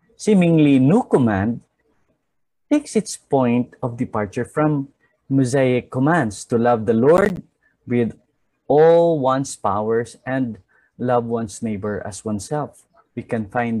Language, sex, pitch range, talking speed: English, male, 110-155 Hz, 120 wpm